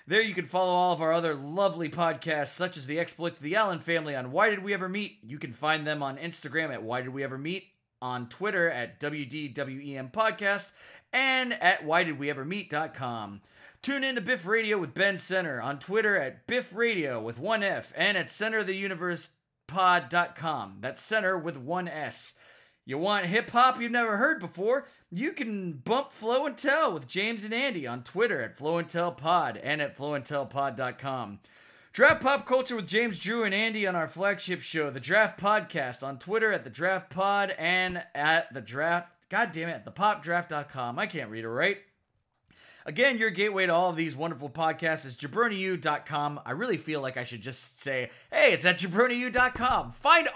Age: 30-49